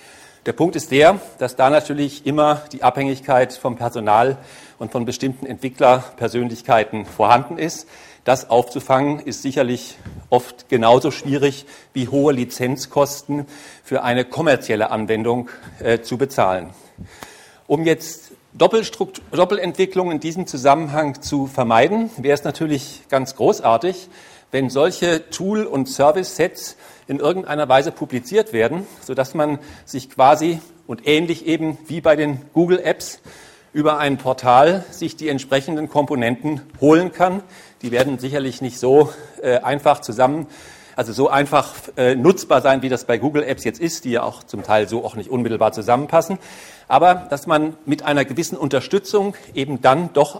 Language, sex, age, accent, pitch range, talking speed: German, male, 50-69, German, 125-160 Hz, 140 wpm